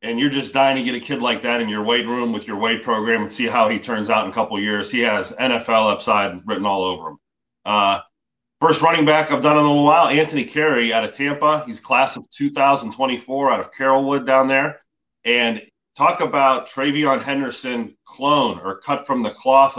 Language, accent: English, American